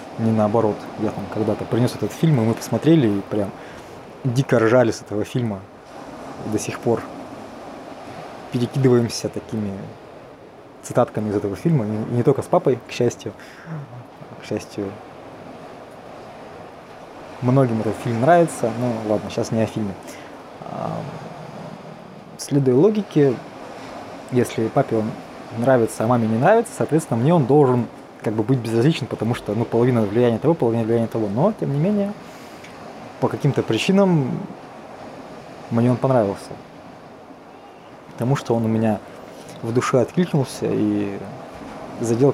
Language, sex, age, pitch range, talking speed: Russian, male, 20-39, 110-140 Hz, 135 wpm